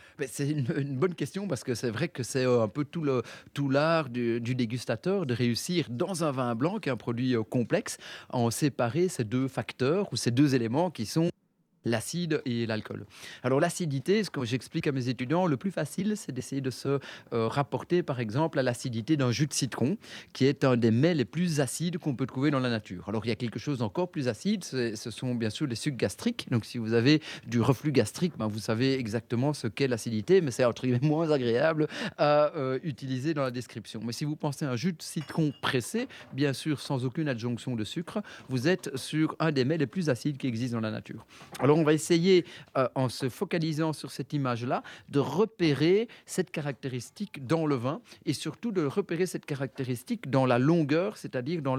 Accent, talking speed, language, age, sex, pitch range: French, 220 wpm, French, 30-49, male, 125-160 Hz